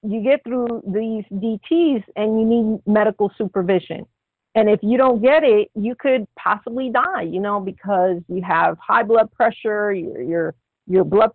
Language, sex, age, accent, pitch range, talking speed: English, female, 50-69, American, 190-230 Hz, 170 wpm